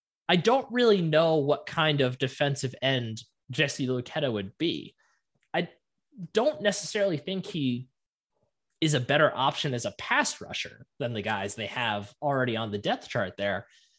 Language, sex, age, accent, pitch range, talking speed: English, male, 20-39, American, 115-170 Hz, 160 wpm